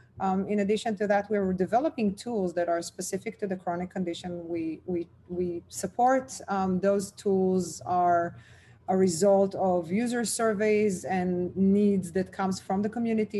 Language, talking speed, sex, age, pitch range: English, 160 wpm, female, 30-49, 175-205 Hz